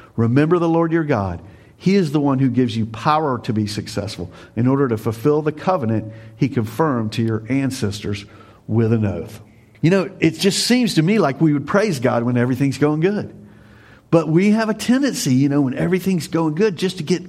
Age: 50-69